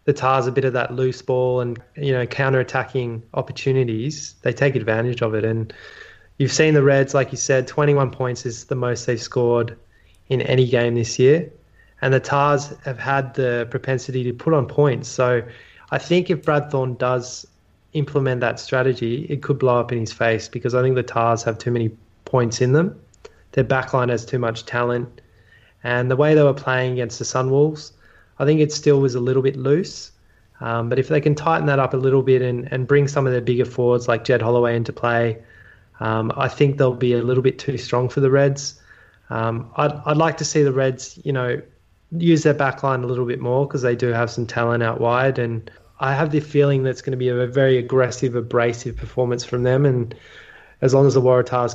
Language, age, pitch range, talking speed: English, 20-39, 120-135 Hz, 215 wpm